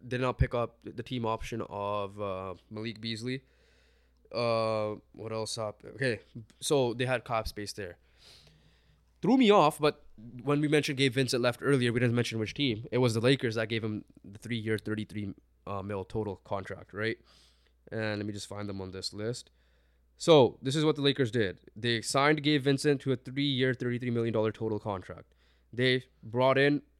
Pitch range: 105-130 Hz